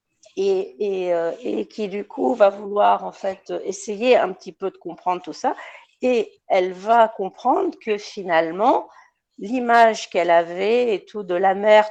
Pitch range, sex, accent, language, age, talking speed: 170-220 Hz, female, French, French, 50-69, 165 wpm